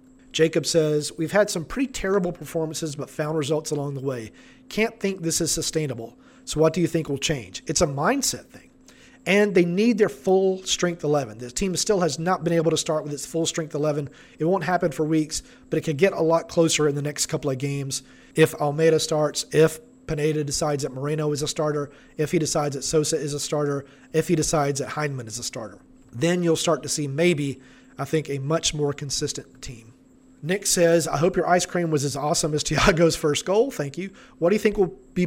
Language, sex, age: English, male, 40-59